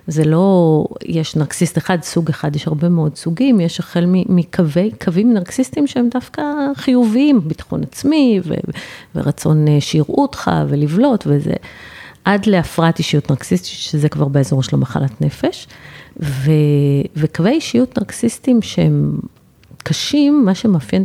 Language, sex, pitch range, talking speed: Hebrew, female, 145-185 Hz, 130 wpm